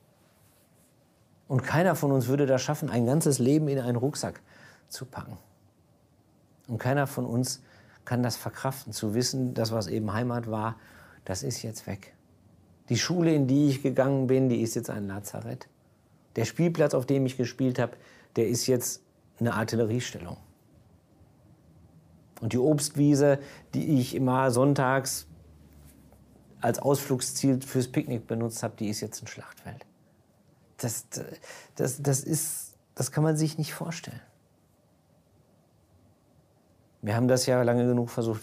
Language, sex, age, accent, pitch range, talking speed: German, male, 50-69, German, 110-135 Hz, 145 wpm